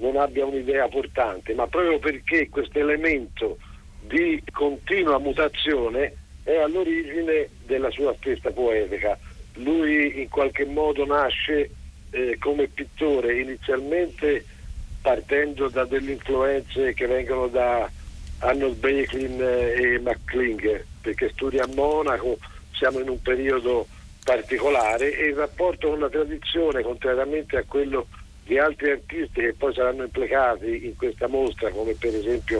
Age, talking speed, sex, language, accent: 50-69, 125 wpm, male, Italian, native